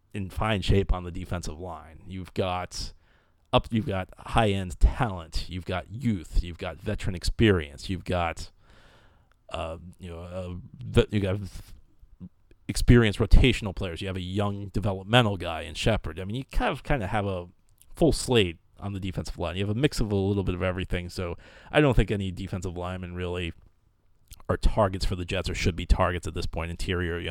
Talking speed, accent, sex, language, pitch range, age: 195 wpm, American, male, English, 85-100 Hz, 30-49